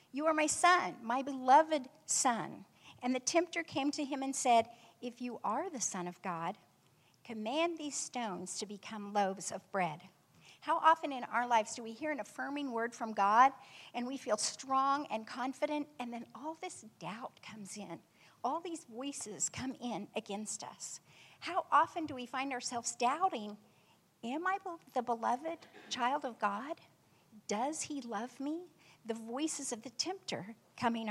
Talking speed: 170 wpm